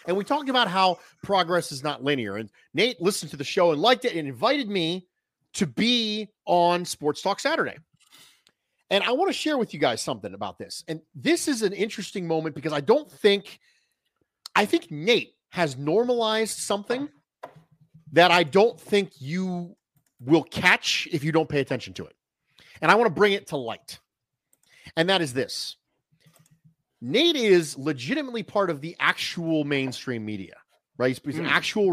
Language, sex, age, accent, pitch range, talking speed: English, male, 40-59, American, 150-200 Hz, 175 wpm